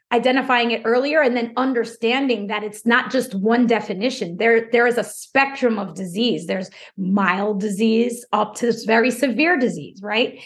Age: 30-49